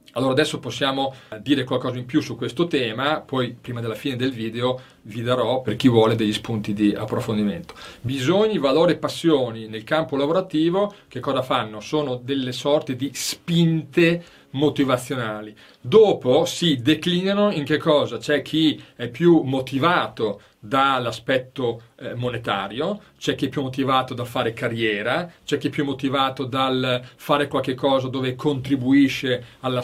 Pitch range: 125-150 Hz